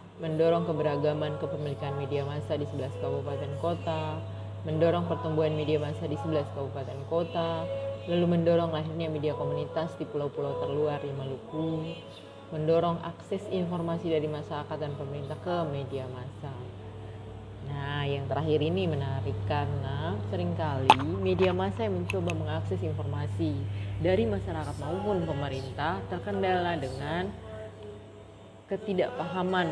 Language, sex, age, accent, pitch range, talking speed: Indonesian, female, 30-49, native, 105-155 Hz, 115 wpm